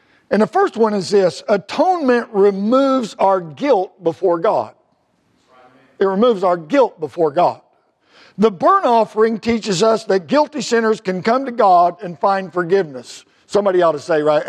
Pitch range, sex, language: 190-255 Hz, male, English